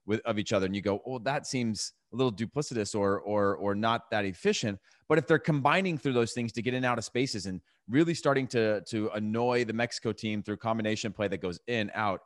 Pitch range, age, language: 100-120 Hz, 30-49, English